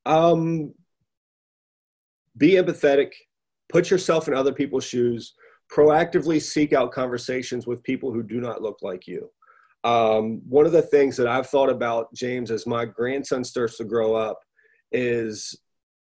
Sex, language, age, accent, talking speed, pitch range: male, English, 30-49, American, 145 wpm, 120-155 Hz